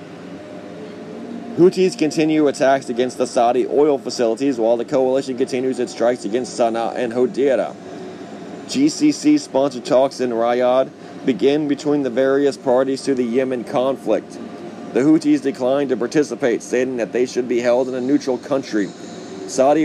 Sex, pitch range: male, 125-140 Hz